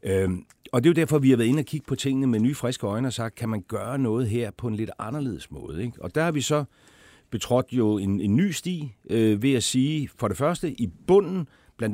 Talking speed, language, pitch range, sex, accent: 245 wpm, Danish, 95-130 Hz, male, native